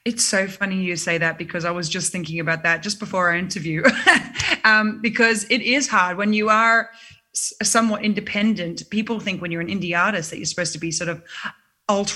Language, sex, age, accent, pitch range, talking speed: English, female, 20-39, Australian, 175-215 Hz, 205 wpm